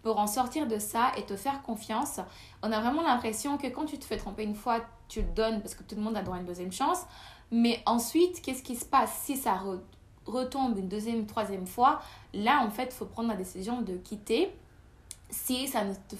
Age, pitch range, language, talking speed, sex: 20-39, 200-240 Hz, French, 235 wpm, female